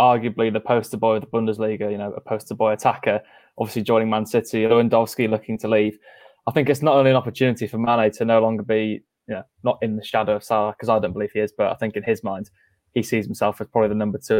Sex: male